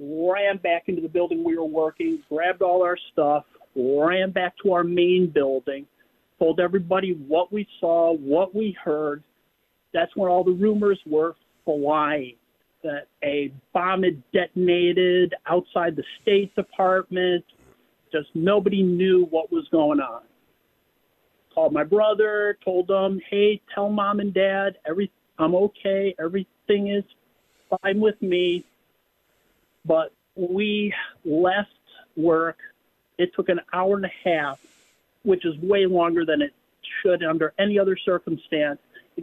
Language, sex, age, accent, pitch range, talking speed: English, male, 50-69, American, 165-200 Hz, 140 wpm